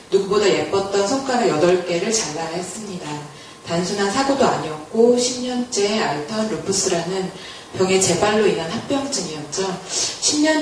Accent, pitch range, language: native, 170-235 Hz, Korean